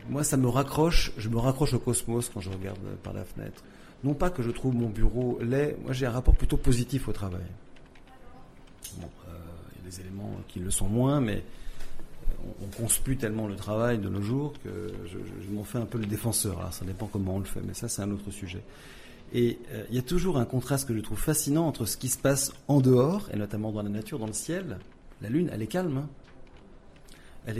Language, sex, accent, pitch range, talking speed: French, male, French, 105-135 Hz, 235 wpm